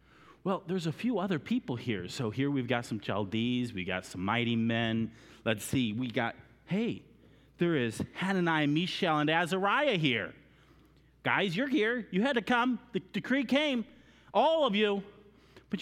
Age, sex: 30-49, male